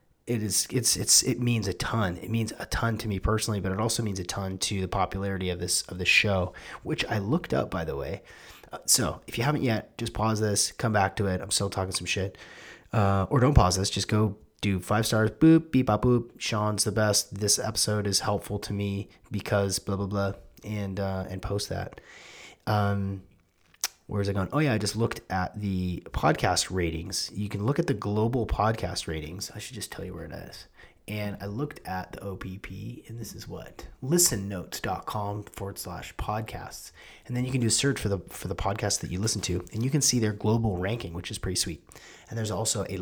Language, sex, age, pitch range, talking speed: English, male, 30-49, 95-110 Hz, 225 wpm